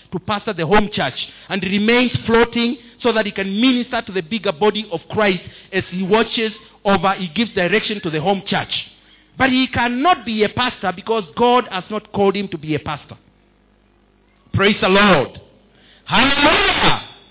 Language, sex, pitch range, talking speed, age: English, male, 185-240 Hz, 175 wpm, 50-69